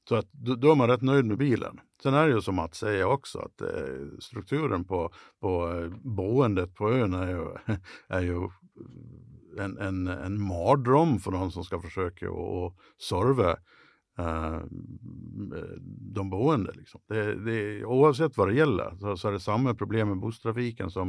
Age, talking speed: 60-79, 170 wpm